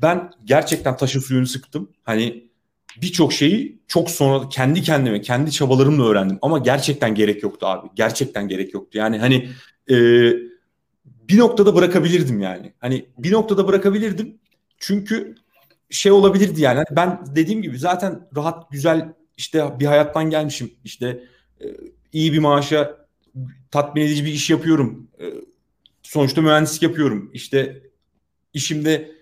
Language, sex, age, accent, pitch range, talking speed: Turkish, male, 40-59, native, 120-160 Hz, 135 wpm